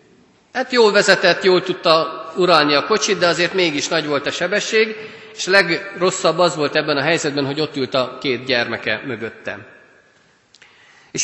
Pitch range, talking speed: 130-185 Hz, 165 wpm